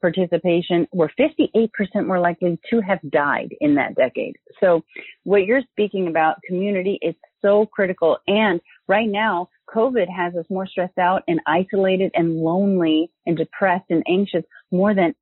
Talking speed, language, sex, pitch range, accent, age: 155 wpm, English, female, 165-210 Hz, American, 40-59